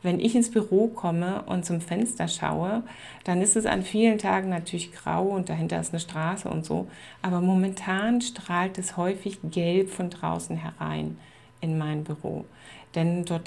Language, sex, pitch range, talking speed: German, female, 175-215 Hz, 170 wpm